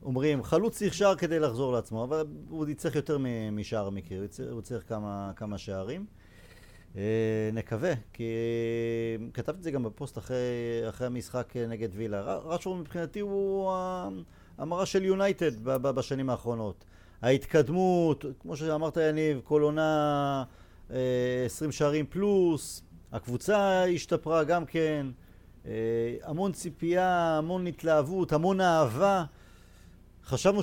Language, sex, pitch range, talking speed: Hebrew, male, 110-155 Hz, 125 wpm